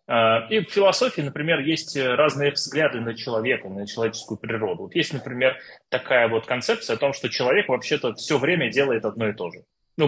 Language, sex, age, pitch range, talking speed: Russian, male, 20-39, 110-145 Hz, 180 wpm